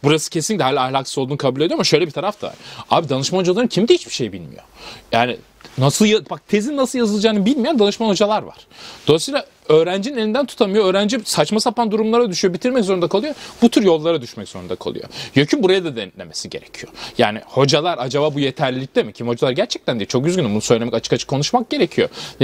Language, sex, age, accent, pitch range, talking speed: Turkish, male, 30-49, native, 140-230 Hz, 185 wpm